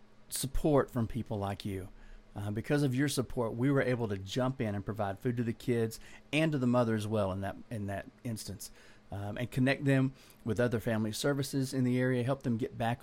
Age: 40-59